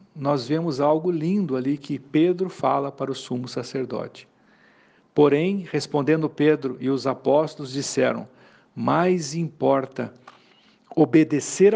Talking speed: 110 wpm